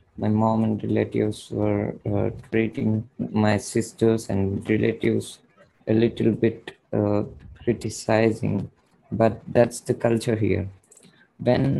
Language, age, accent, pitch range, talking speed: English, 20-39, Indian, 105-115 Hz, 110 wpm